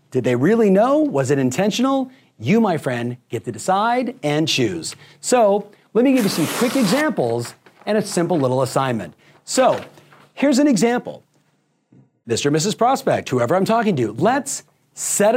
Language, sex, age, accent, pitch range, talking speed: English, male, 40-59, American, 145-225 Hz, 165 wpm